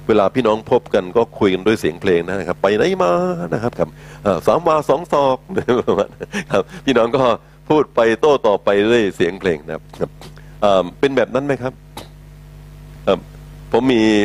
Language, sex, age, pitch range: Thai, male, 60-79, 100-150 Hz